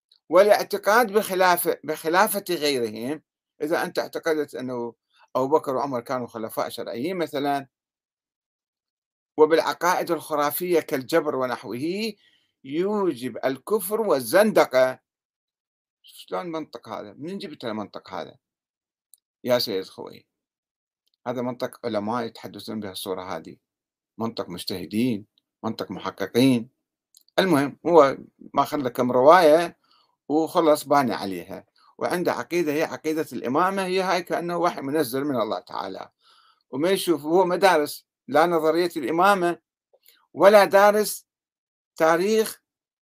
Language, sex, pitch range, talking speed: Arabic, male, 130-180 Hz, 105 wpm